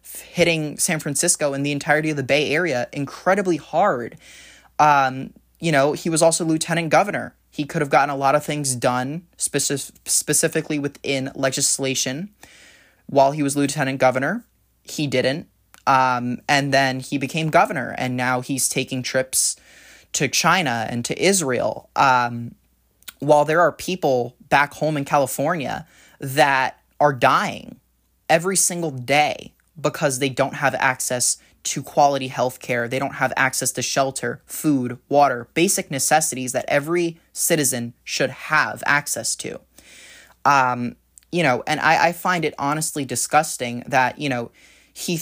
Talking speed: 145 wpm